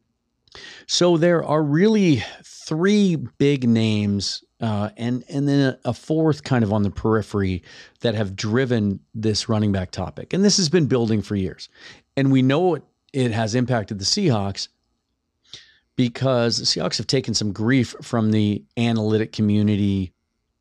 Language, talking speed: English, 150 wpm